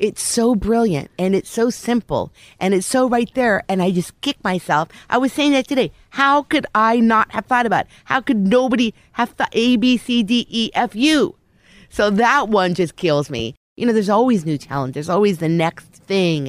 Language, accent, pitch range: English, American, 155-220 Hz